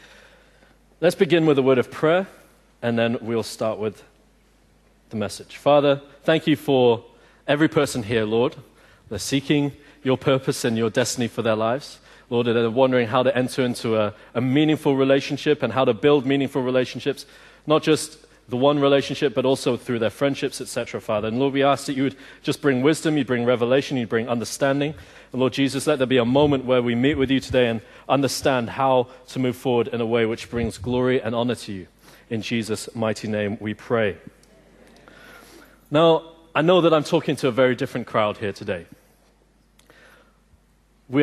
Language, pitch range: English, 125-150 Hz